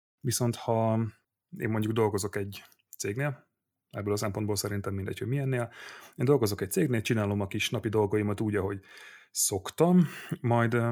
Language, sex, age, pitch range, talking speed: Hungarian, male, 30-49, 105-120 Hz, 150 wpm